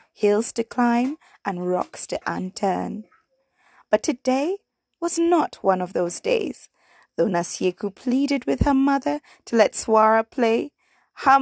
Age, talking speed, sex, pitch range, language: 20-39, 135 wpm, female, 185-280 Hz, English